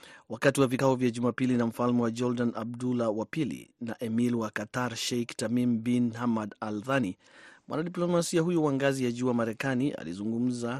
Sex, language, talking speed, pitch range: male, Swahili, 160 wpm, 110-125 Hz